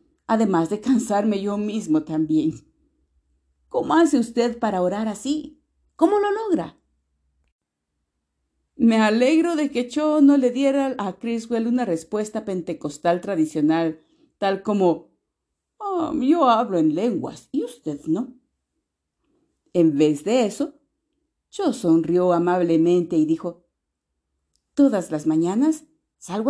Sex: female